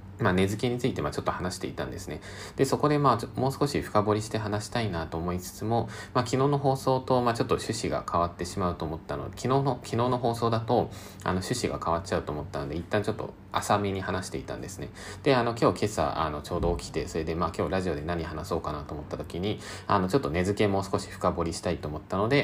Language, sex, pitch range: Japanese, male, 85-110 Hz